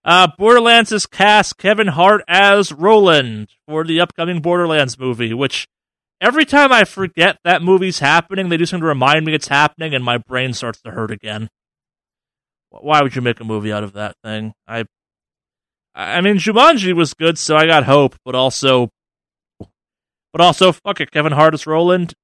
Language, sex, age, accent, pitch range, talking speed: English, male, 30-49, American, 130-175 Hz, 180 wpm